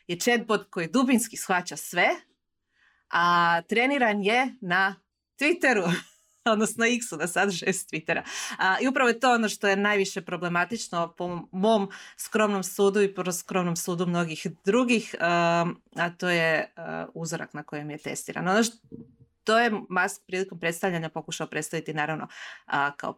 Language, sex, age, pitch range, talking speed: Croatian, female, 30-49, 165-215 Hz, 140 wpm